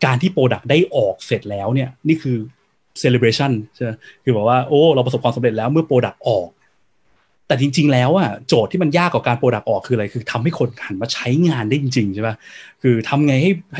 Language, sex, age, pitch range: Thai, male, 20-39, 120-165 Hz